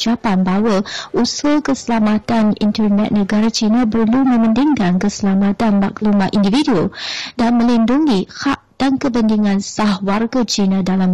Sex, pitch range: female, 200-240 Hz